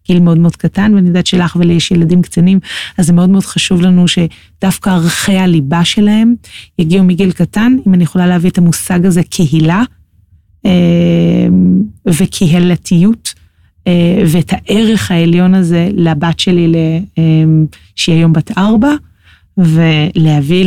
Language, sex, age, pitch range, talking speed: Hebrew, female, 30-49, 170-205 Hz, 130 wpm